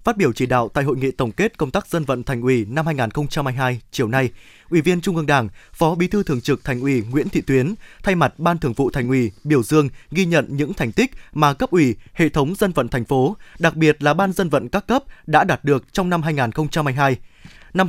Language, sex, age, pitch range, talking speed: Vietnamese, male, 20-39, 140-175 Hz, 240 wpm